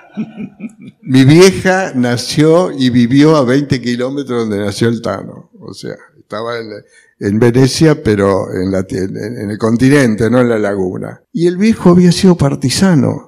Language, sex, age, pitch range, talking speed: Spanish, male, 60-79, 115-155 Hz, 160 wpm